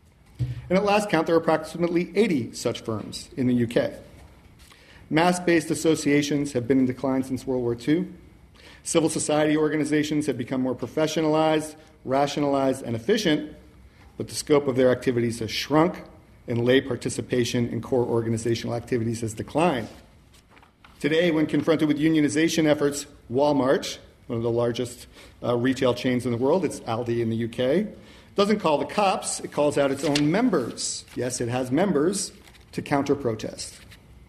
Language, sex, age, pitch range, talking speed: English, male, 40-59, 125-155 Hz, 155 wpm